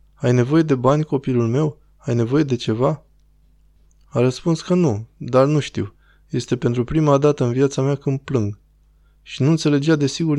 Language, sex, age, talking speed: Romanian, male, 20-39, 175 wpm